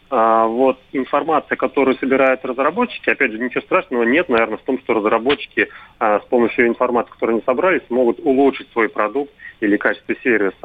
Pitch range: 115-135 Hz